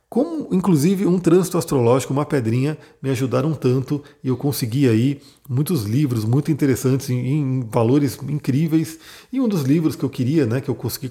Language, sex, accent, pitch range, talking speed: Portuguese, male, Brazilian, 125-150 Hz, 175 wpm